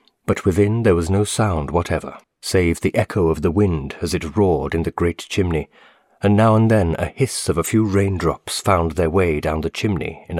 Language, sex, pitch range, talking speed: English, male, 80-105 Hz, 215 wpm